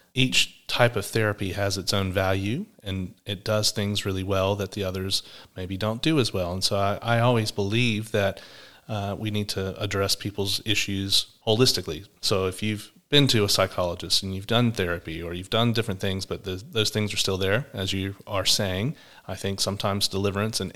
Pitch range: 95-115 Hz